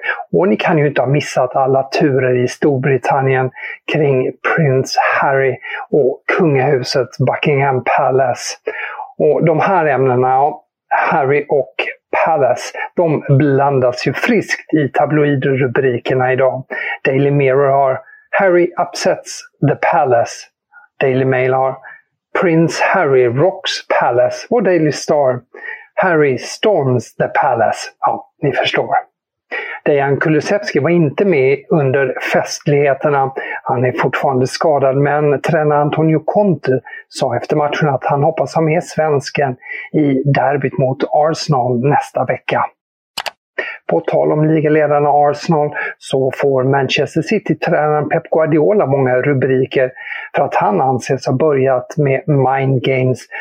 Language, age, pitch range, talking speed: English, 50-69, 130-160 Hz, 120 wpm